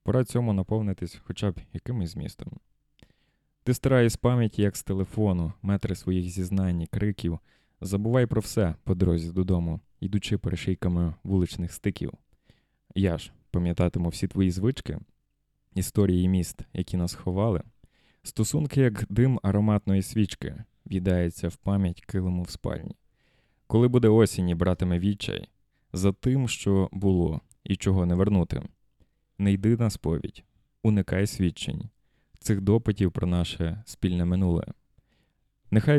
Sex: male